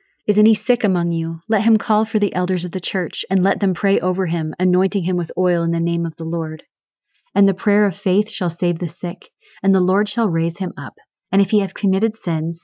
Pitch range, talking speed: 165-195 Hz, 245 wpm